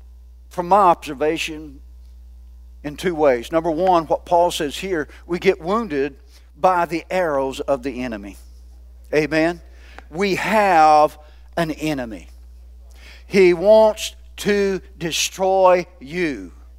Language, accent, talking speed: English, American, 110 wpm